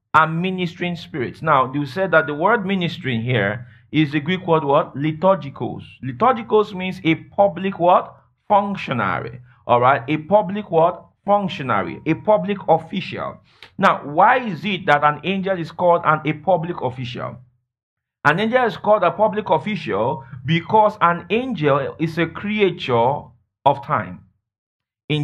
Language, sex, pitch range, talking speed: English, male, 140-190 Hz, 145 wpm